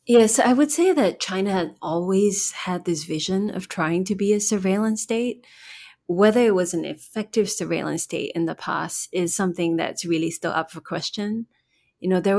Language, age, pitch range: English, 20-39, 170-215 Hz